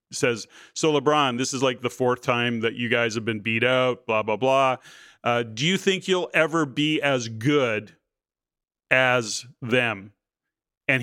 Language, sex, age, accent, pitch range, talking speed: English, male, 40-59, American, 125-150 Hz, 170 wpm